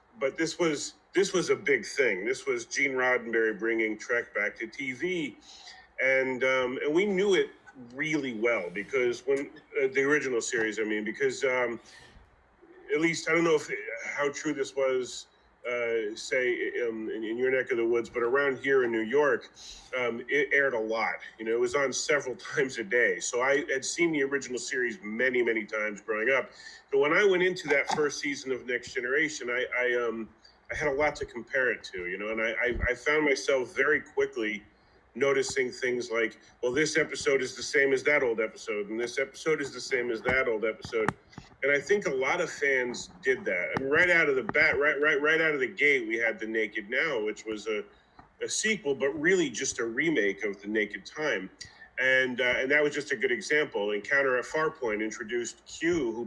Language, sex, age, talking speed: English, male, 40-59, 210 wpm